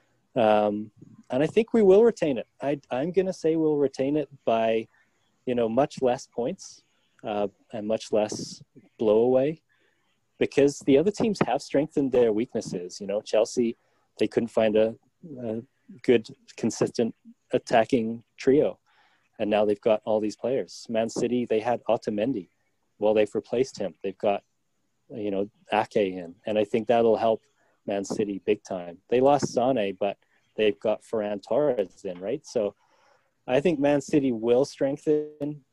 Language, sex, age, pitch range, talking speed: English, male, 30-49, 105-135 Hz, 160 wpm